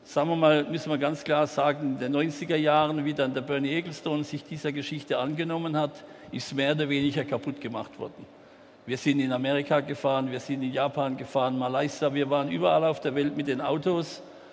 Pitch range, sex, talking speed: 135-155 Hz, male, 200 wpm